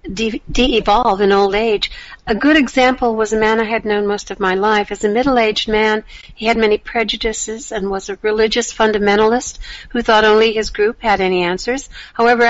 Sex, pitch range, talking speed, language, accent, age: female, 215-250 Hz, 185 wpm, English, American, 60-79